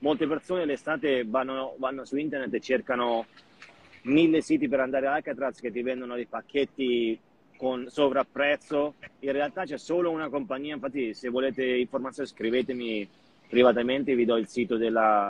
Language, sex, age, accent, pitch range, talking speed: Italian, male, 30-49, native, 115-140 Hz, 155 wpm